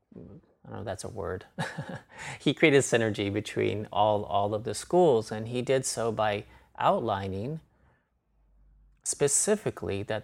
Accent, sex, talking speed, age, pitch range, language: American, male, 140 wpm, 30-49, 105-125 Hz, English